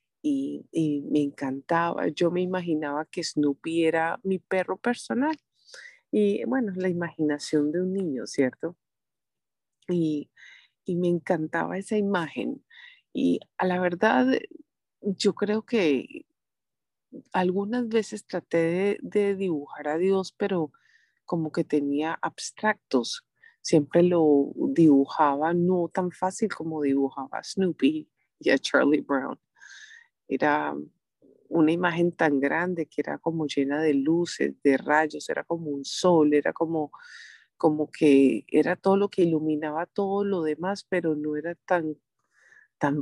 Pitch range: 155-210 Hz